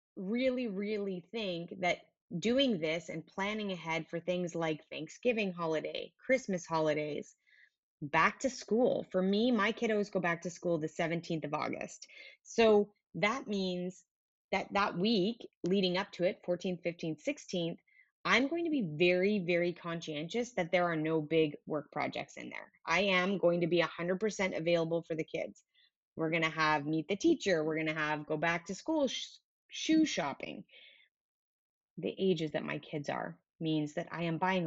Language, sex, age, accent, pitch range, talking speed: English, female, 20-39, American, 160-205 Hz, 170 wpm